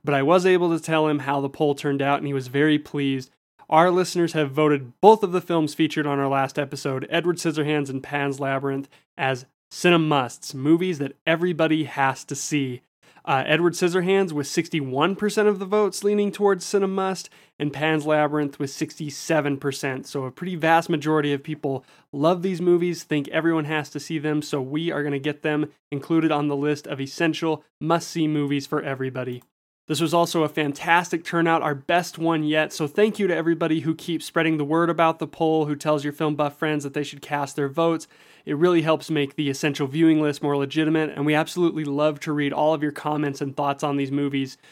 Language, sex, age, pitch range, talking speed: English, male, 20-39, 145-165 Hz, 210 wpm